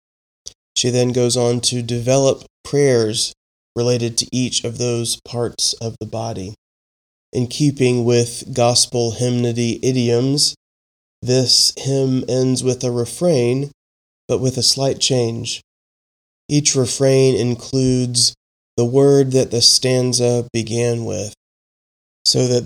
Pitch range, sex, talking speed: 115-130 Hz, male, 120 wpm